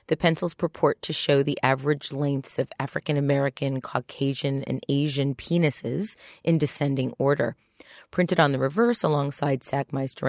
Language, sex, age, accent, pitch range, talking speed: English, female, 40-59, American, 135-160 Hz, 140 wpm